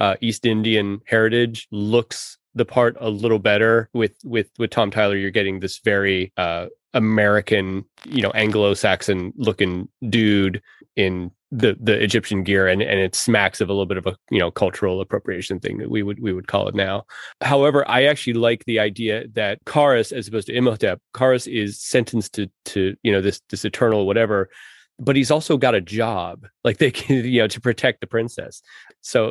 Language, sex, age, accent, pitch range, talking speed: English, male, 30-49, American, 100-120 Hz, 190 wpm